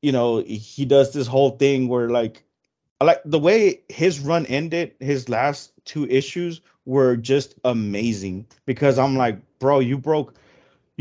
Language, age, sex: English, 30-49, male